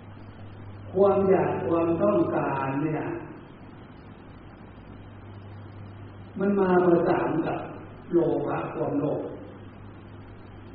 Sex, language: male, Thai